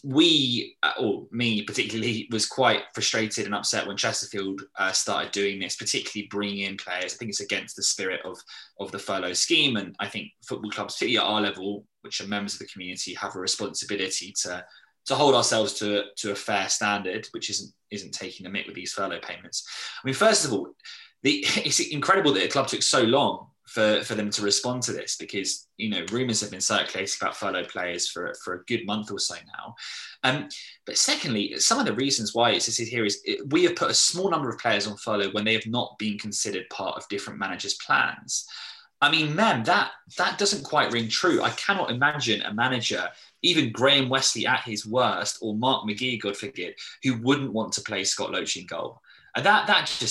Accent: British